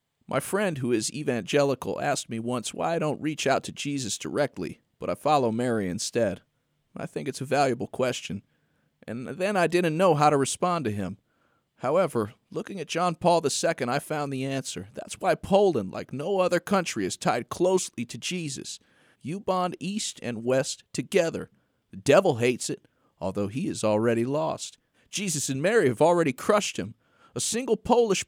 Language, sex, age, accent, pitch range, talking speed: English, male, 40-59, American, 130-185 Hz, 180 wpm